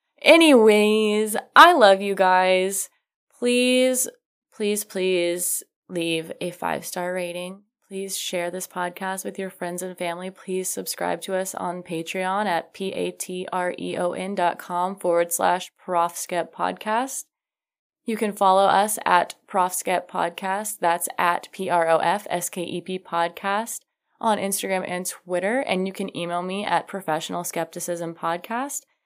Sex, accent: female, American